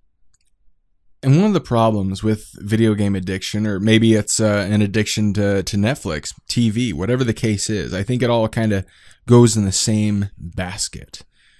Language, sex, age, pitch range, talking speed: English, male, 20-39, 100-125 Hz, 160 wpm